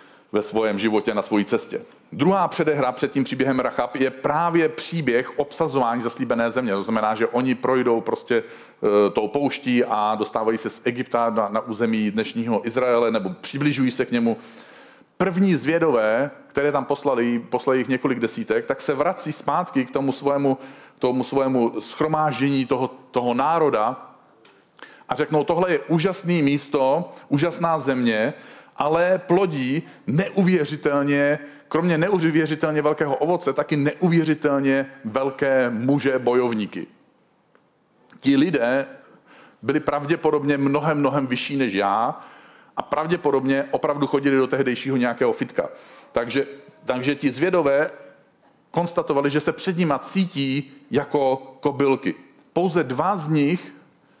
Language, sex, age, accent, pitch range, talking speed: Czech, male, 40-59, native, 125-155 Hz, 125 wpm